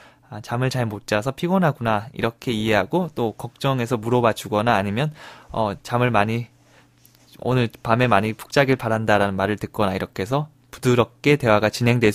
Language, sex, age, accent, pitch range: Korean, male, 20-39, native, 105-135 Hz